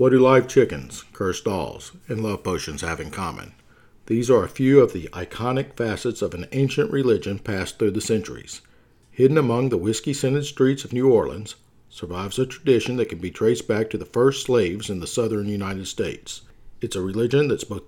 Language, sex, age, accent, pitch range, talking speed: English, male, 50-69, American, 110-140 Hz, 195 wpm